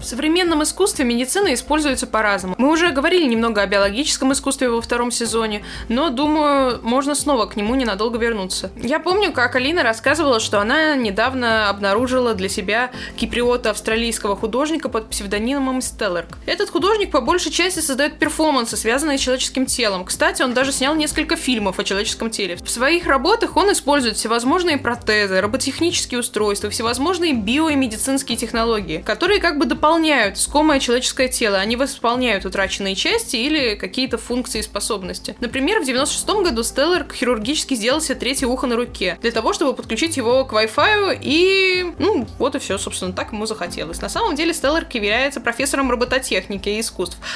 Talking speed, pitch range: 160 wpm, 230-300 Hz